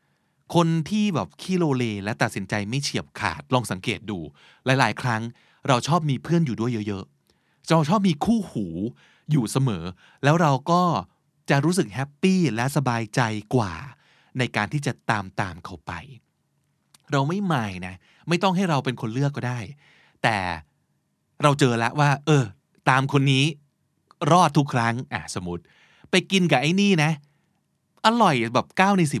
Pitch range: 115-165 Hz